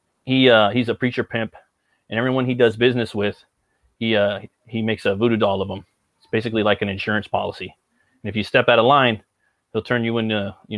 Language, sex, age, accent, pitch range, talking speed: English, male, 30-49, American, 105-115 Hz, 215 wpm